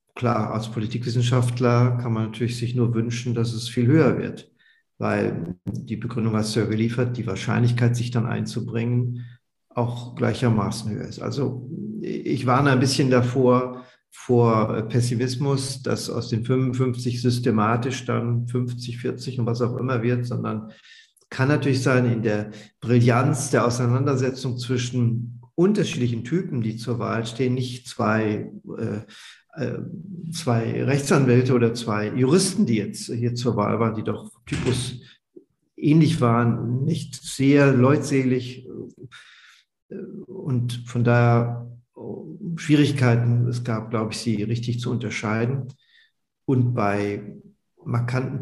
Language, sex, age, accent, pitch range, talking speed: German, male, 50-69, German, 115-130 Hz, 130 wpm